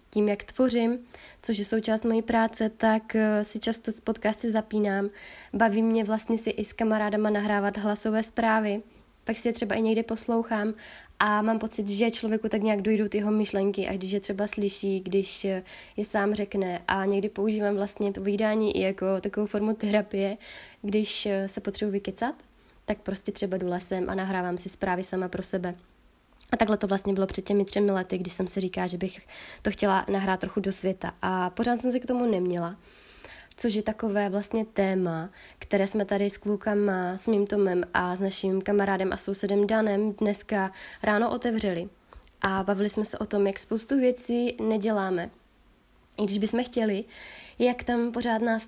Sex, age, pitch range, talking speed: female, 20-39, 195-220 Hz, 175 wpm